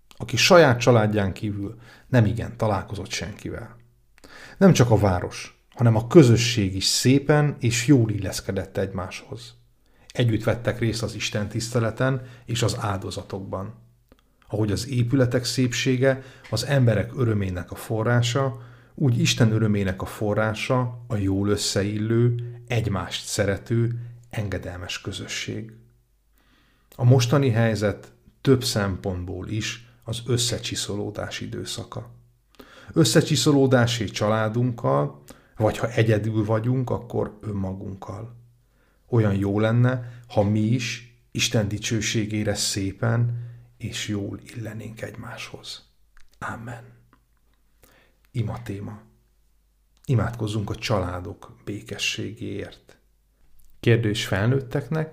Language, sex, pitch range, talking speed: Hungarian, male, 105-120 Hz, 95 wpm